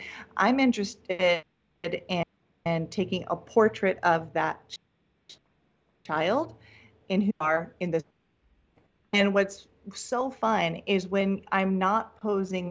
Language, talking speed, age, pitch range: English, 115 wpm, 40-59, 170-205 Hz